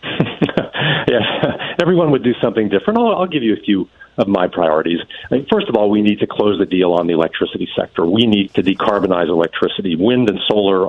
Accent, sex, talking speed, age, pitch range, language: American, male, 210 wpm, 50-69, 105-150 Hz, English